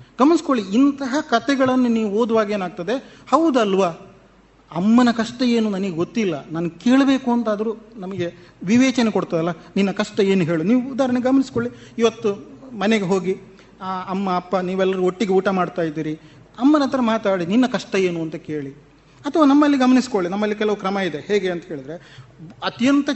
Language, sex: Kannada, male